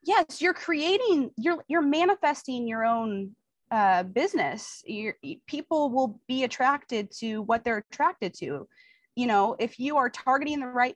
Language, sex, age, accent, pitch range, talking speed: English, female, 20-39, American, 190-265 Hz, 150 wpm